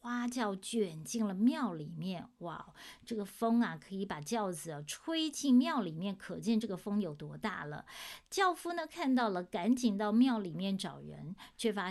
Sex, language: female, Chinese